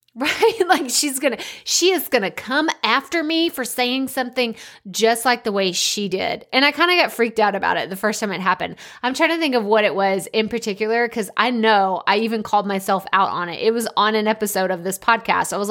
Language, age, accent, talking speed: English, 20-39, American, 240 wpm